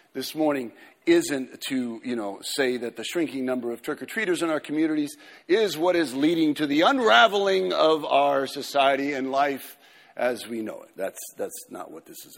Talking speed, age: 185 wpm, 50-69